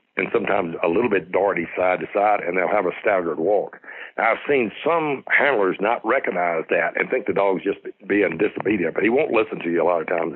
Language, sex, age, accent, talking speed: English, male, 60-79, American, 230 wpm